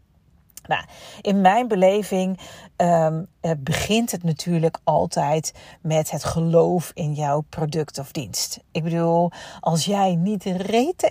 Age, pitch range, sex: 40-59, 165-195 Hz, female